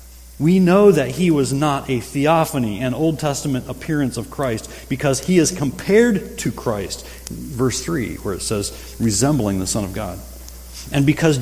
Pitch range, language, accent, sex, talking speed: 100-140 Hz, English, American, male, 170 wpm